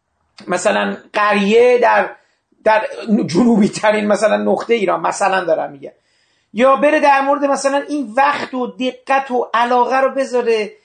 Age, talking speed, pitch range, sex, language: 40-59, 140 wpm, 210-270 Hz, male, Persian